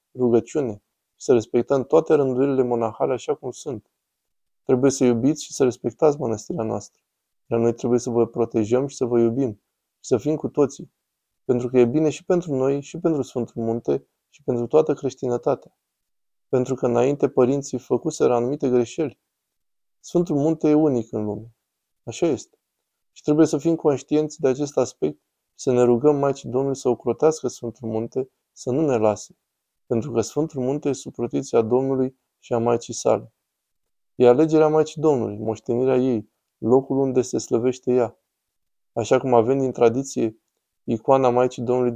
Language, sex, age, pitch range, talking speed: Romanian, male, 20-39, 115-140 Hz, 160 wpm